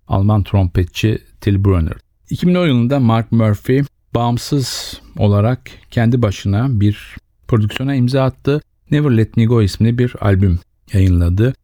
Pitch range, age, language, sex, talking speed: 100-120 Hz, 50-69, Turkish, male, 125 wpm